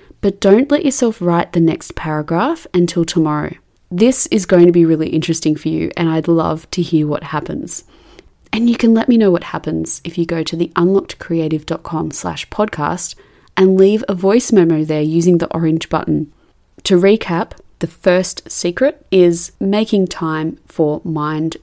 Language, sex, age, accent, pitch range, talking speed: English, female, 20-39, Australian, 160-205 Hz, 170 wpm